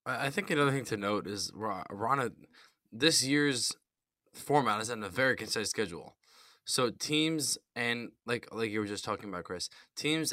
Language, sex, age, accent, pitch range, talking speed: English, male, 10-29, American, 105-130 Hz, 170 wpm